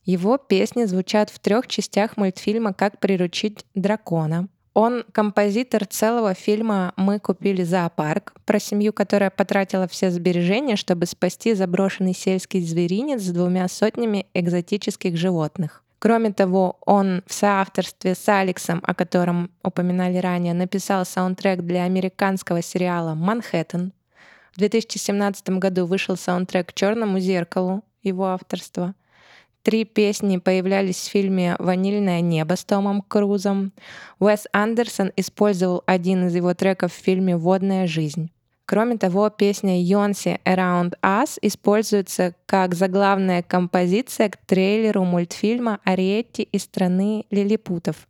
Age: 20-39